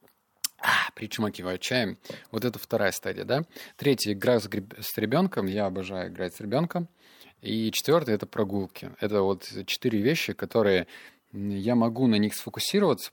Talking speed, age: 155 wpm, 20-39